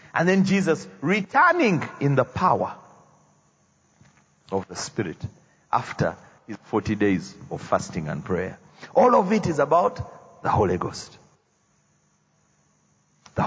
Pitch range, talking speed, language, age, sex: 135-215 Hz, 120 wpm, English, 40-59, male